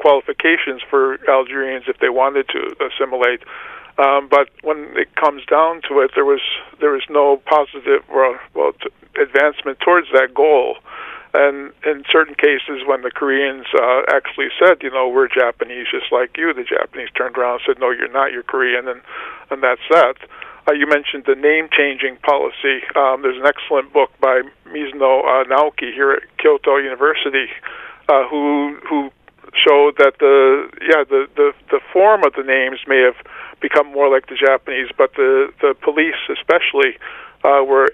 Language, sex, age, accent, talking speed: English, male, 50-69, American, 165 wpm